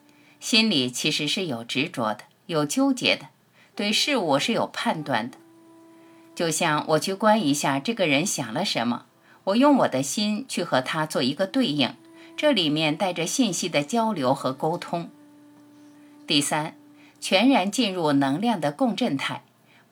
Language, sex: Chinese, female